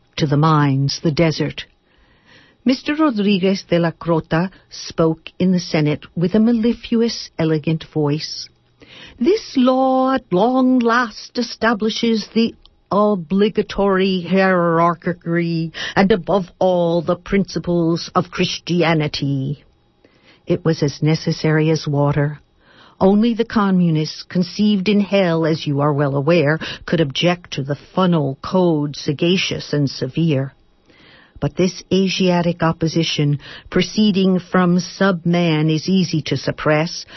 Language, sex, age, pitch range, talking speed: English, female, 60-79, 155-195 Hz, 115 wpm